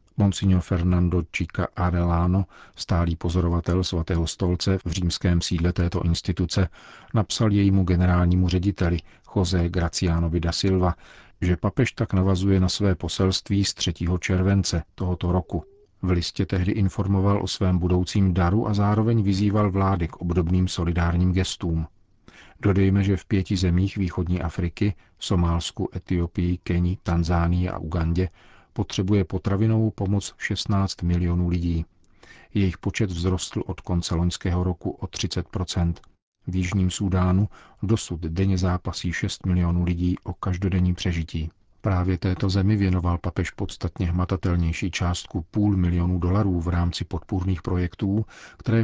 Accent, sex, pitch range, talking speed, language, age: native, male, 90-100 Hz, 130 wpm, Czech, 40-59